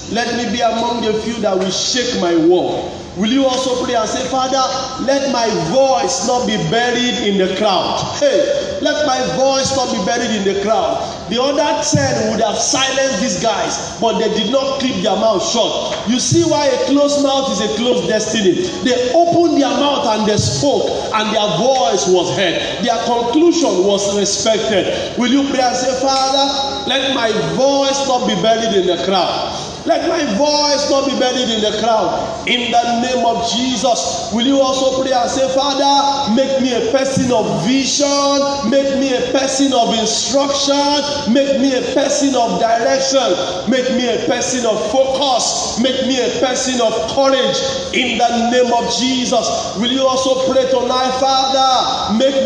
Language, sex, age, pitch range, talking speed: English, male, 40-59, 230-270 Hz, 180 wpm